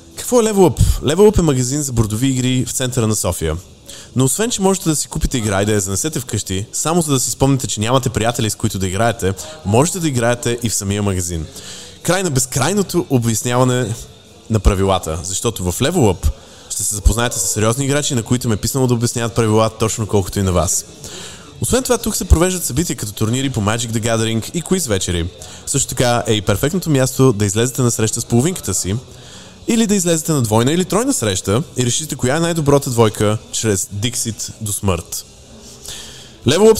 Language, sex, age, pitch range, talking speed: Bulgarian, male, 20-39, 100-135 Hz, 200 wpm